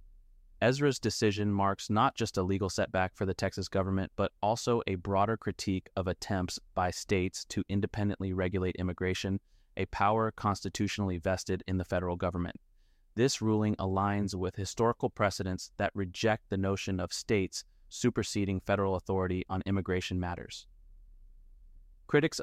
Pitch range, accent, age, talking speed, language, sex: 90-105 Hz, American, 30-49, 140 wpm, English, male